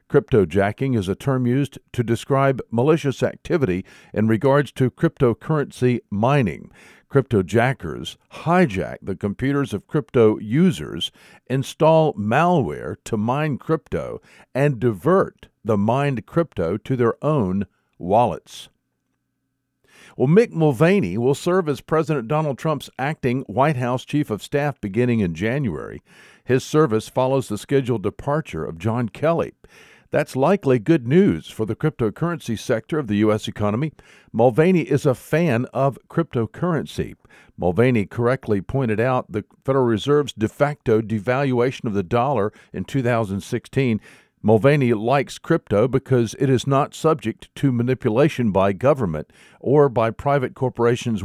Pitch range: 110-145 Hz